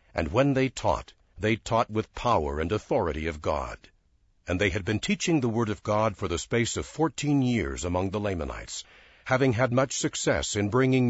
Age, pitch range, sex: 60-79, 90-130 Hz, male